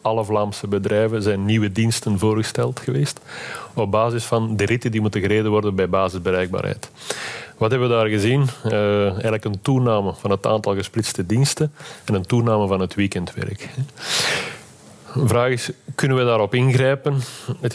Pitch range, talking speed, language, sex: 100-120 Hz, 160 wpm, Dutch, male